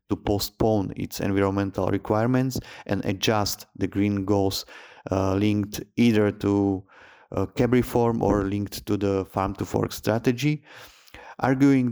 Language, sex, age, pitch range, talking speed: English, male, 30-49, 95-115 Hz, 130 wpm